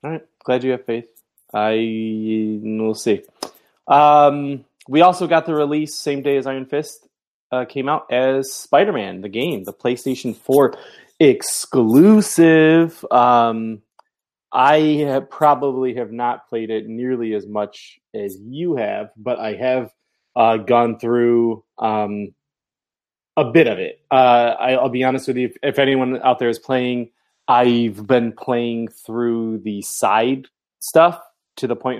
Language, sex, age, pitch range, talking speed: English, male, 20-39, 115-140 Hz, 150 wpm